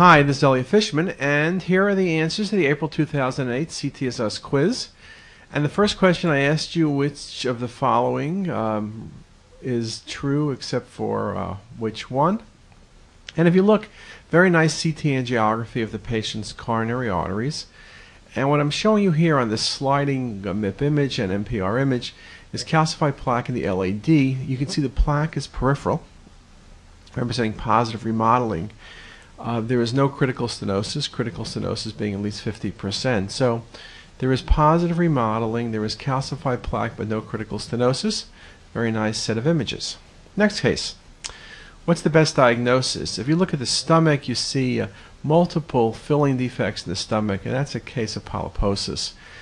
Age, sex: 40-59, male